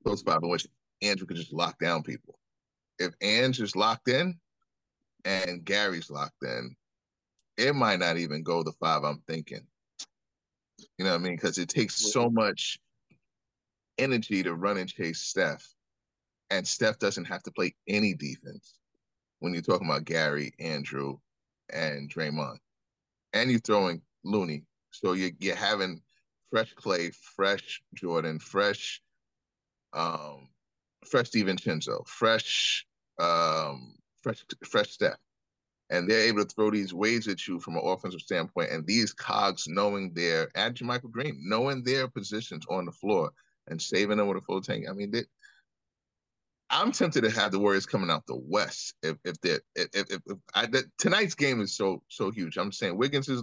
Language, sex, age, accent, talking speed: English, male, 30-49, American, 165 wpm